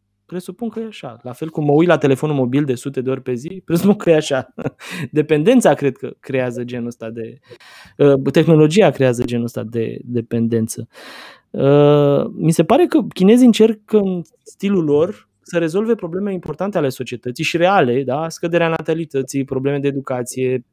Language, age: Romanian, 20-39